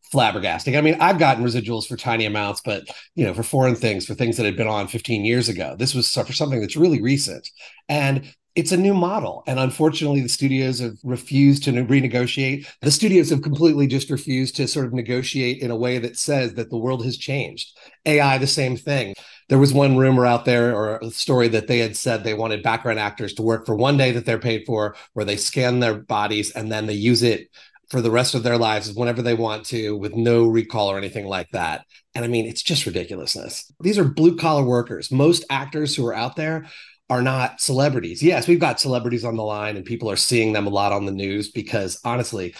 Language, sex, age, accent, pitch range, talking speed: English, male, 30-49, American, 115-140 Hz, 225 wpm